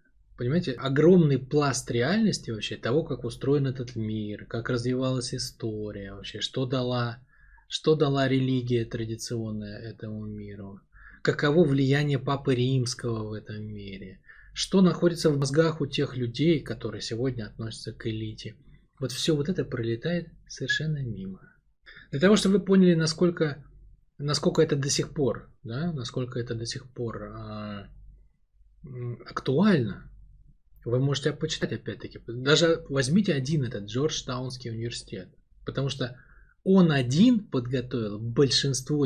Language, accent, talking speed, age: Russian, native, 130 wpm, 20-39